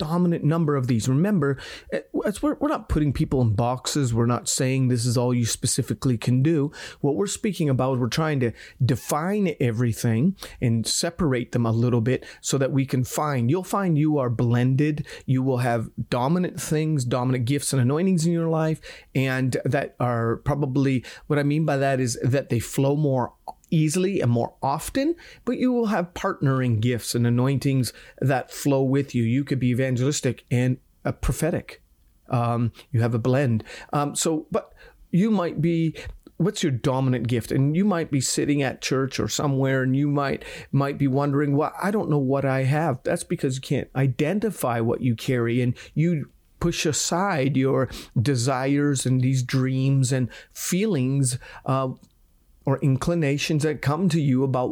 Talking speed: 175 wpm